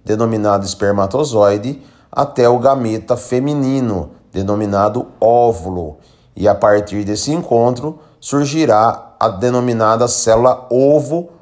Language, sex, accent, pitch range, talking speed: Portuguese, male, Brazilian, 105-135 Hz, 95 wpm